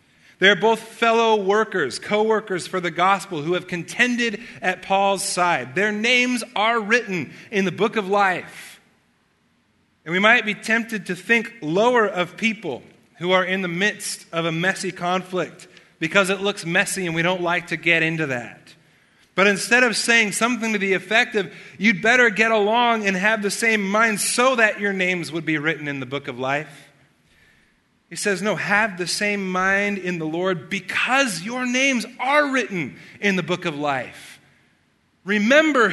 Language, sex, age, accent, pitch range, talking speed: English, male, 30-49, American, 175-230 Hz, 175 wpm